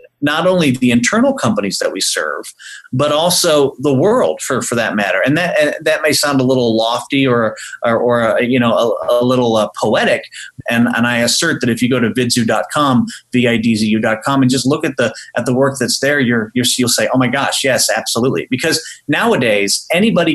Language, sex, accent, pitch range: English, male, American, 120-160 Hz